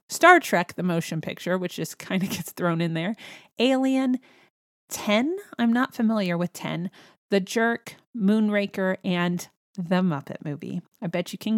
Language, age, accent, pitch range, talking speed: English, 30-49, American, 175-210 Hz, 160 wpm